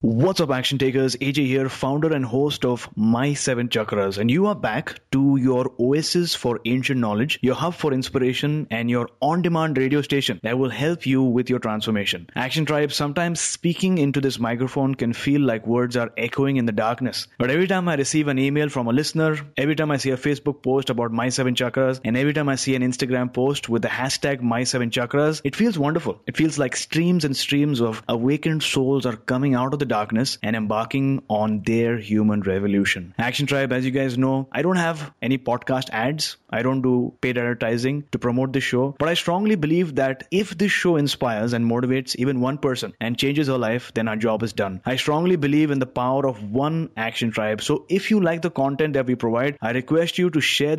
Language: English